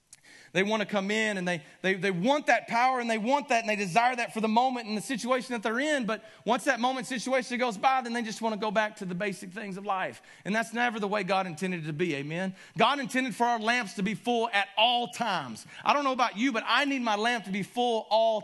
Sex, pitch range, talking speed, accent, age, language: male, 190-250 Hz, 275 wpm, American, 30-49, English